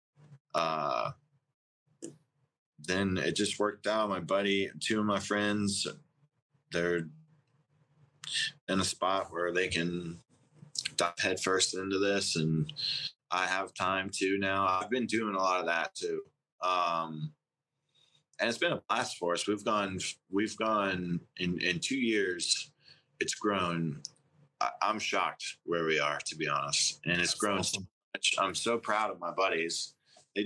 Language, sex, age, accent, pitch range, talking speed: English, male, 20-39, American, 85-105 Hz, 150 wpm